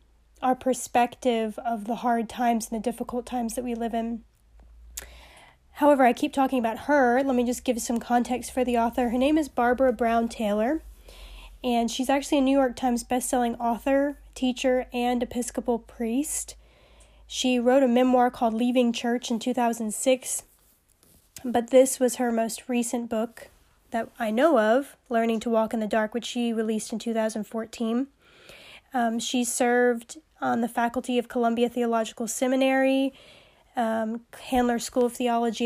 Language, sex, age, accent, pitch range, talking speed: English, female, 10-29, American, 230-255 Hz, 160 wpm